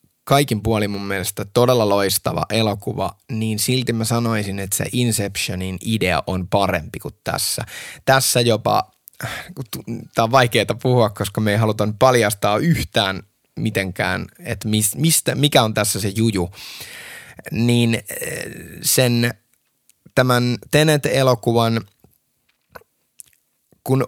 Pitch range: 105-130 Hz